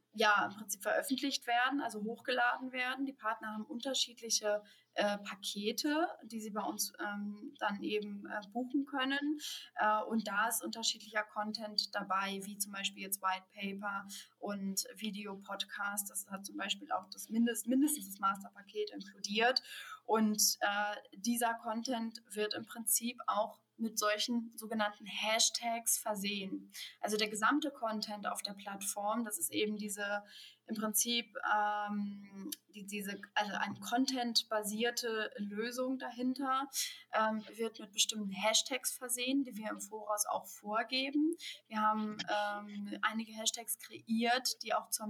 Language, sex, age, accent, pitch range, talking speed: German, female, 20-39, German, 210-240 Hz, 140 wpm